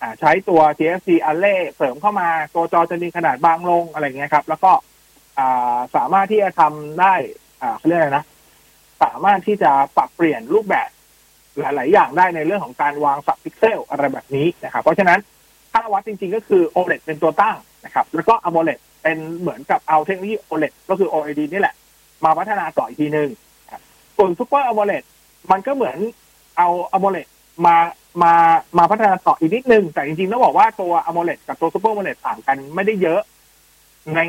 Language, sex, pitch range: Thai, male, 155-205 Hz